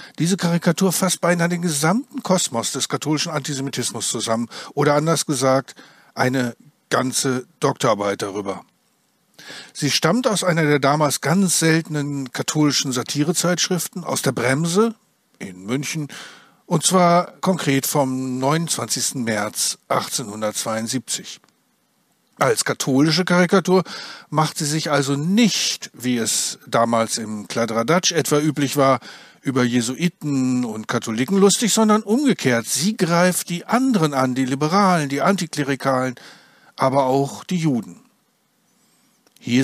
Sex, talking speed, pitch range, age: male, 115 wpm, 130-180 Hz, 50-69